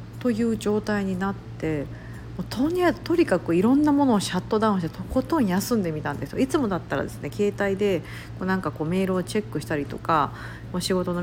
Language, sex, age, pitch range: Japanese, female, 50-69, 150-215 Hz